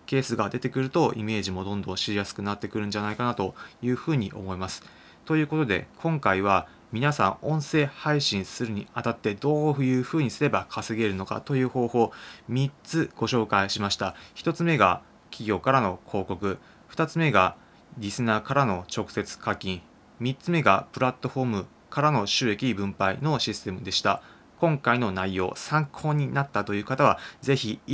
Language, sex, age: Japanese, male, 20-39